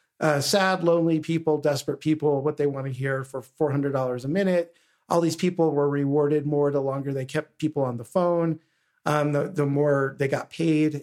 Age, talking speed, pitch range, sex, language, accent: 50-69, 195 wpm, 140-170 Hz, male, English, American